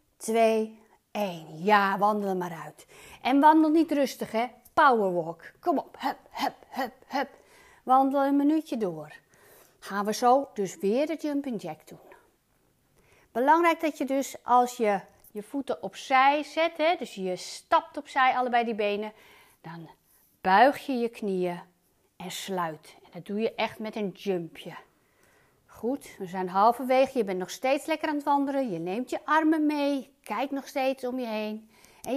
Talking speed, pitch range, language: 160 wpm, 190-275 Hz, Dutch